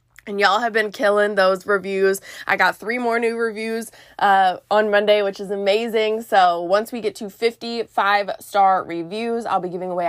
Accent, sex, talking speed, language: American, female, 185 wpm, English